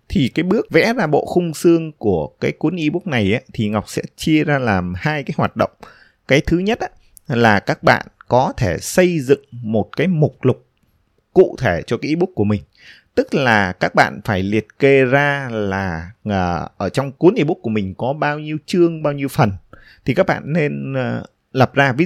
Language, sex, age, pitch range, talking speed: Vietnamese, male, 20-39, 105-145 Hz, 210 wpm